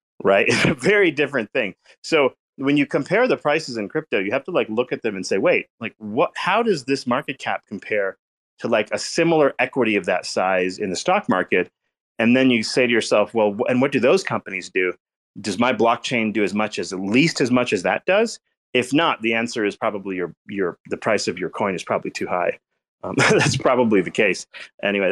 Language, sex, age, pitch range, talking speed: English, male, 30-49, 100-145 Hz, 225 wpm